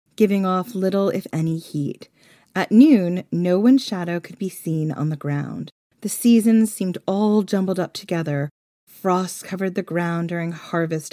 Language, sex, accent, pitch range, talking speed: English, female, American, 160-220 Hz, 160 wpm